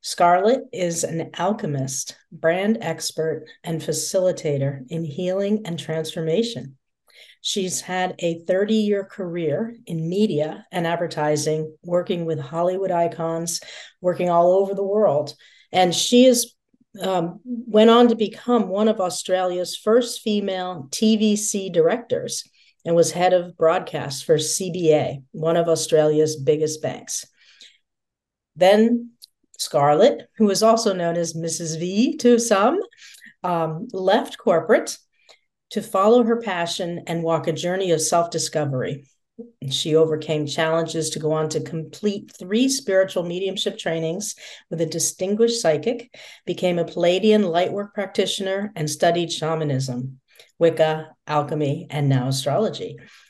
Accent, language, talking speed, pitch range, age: American, English, 125 wpm, 160-205 Hz, 50-69